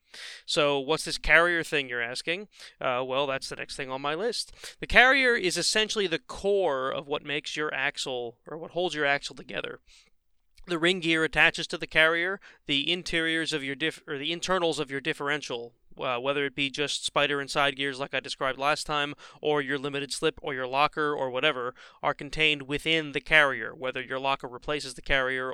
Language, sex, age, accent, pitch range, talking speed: English, male, 30-49, American, 135-165 Hz, 195 wpm